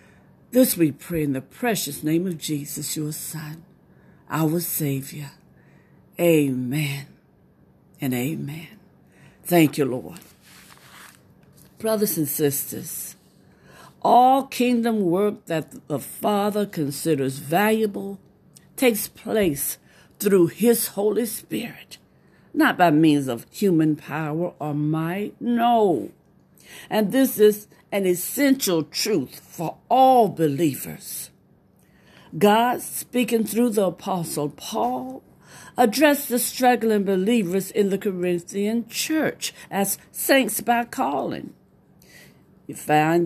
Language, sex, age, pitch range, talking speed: English, female, 60-79, 160-235 Hz, 105 wpm